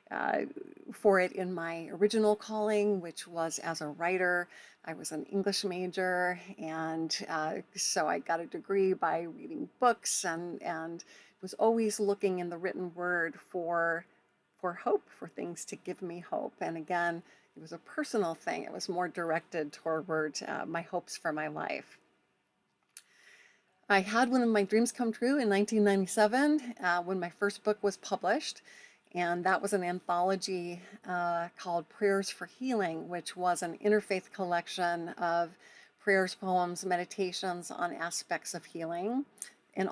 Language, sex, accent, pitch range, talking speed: English, female, American, 175-210 Hz, 155 wpm